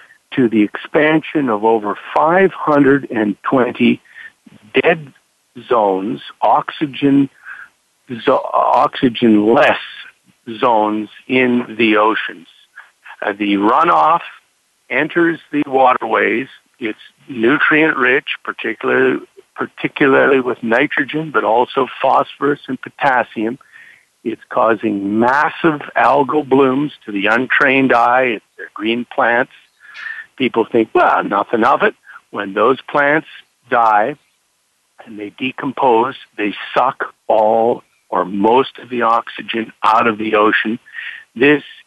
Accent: American